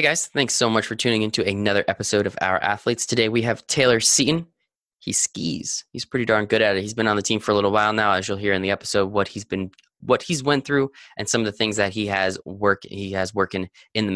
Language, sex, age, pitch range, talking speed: English, male, 20-39, 100-125 Hz, 265 wpm